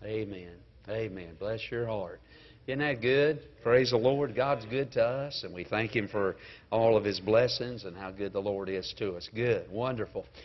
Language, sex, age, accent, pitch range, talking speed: English, male, 50-69, American, 105-135 Hz, 195 wpm